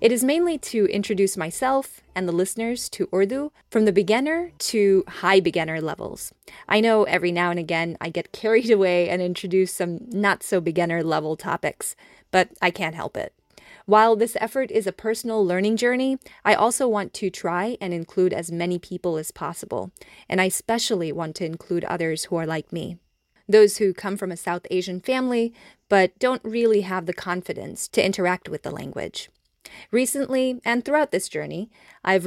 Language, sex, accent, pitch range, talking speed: English, female, American, 175-225 Hz, 180 wpm